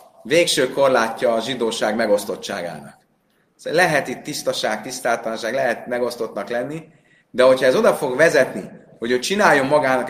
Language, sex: Hungarian, male